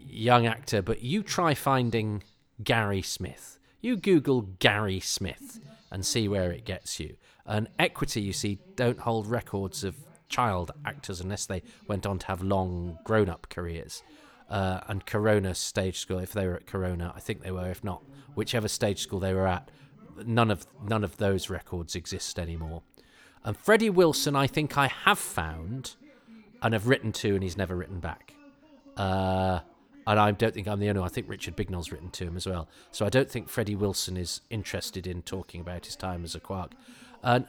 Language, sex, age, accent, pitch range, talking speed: English, male, 40-59, British, 95-135 Hz, 190 wpm